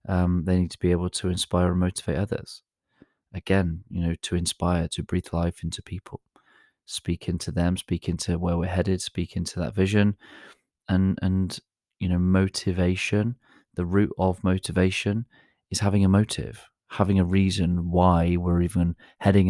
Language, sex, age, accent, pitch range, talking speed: English, male, 30-49, British, 85-95 Hz, 155 wpm